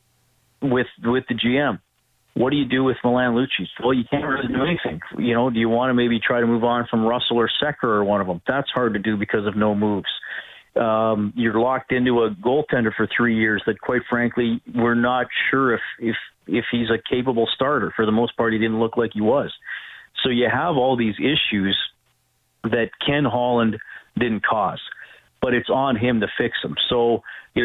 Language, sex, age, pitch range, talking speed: English, male, 40-59, 110-120 Hz, 210 wpm